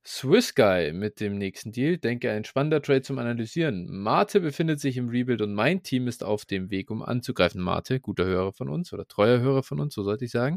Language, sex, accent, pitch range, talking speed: German, male, German, 105-145 Hz, 225 wpm